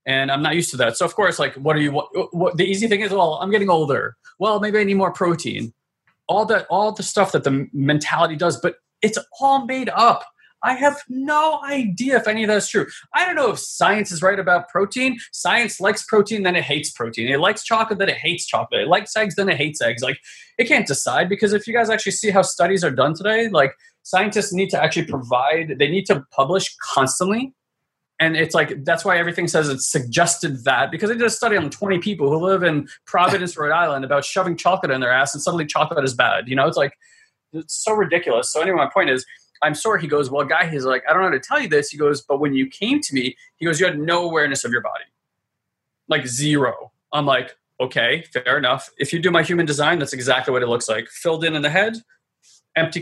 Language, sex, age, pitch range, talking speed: English, male, 20-39, 150-210 Hz, 240 wpm